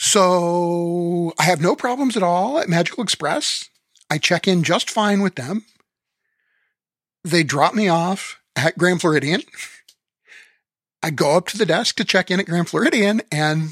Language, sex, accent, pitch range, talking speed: English, male, American, 145-185 Hz, 160 wpm